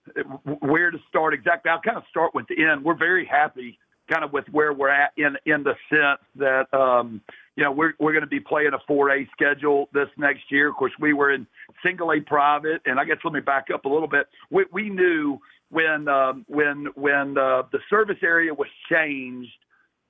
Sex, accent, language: male, American, English